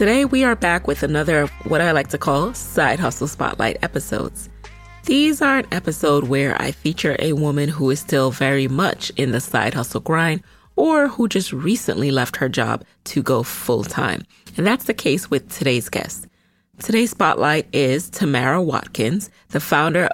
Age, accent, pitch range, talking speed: 30-49, American, 140-200 Hz, 180 wpm